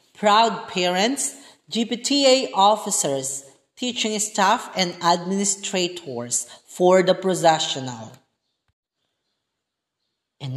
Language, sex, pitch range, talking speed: Filipino, female, 140-200 Hz, 70 wpm